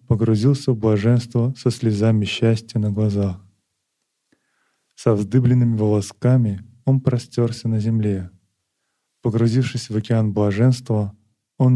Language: Russian